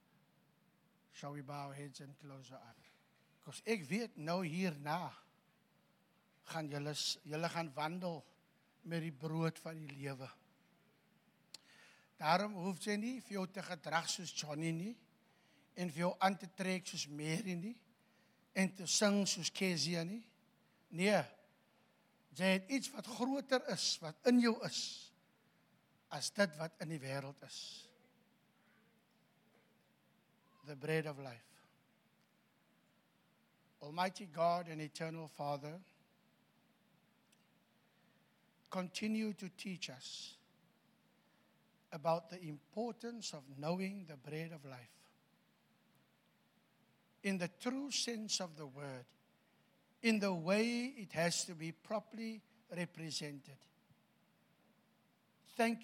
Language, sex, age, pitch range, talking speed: English, male, 60-79, 160-210 Hz, 110 wpm